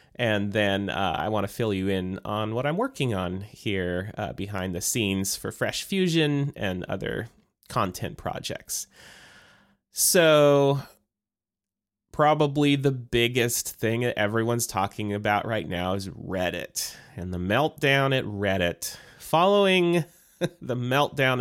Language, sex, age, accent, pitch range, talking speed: English, male, 30-49, American, 100-155 Hz, 130 wpm